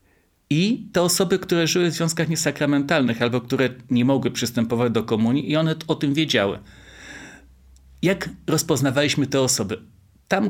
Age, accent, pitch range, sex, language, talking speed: 30-49, native, 125-160 Hz, male, Polish, 145 wpm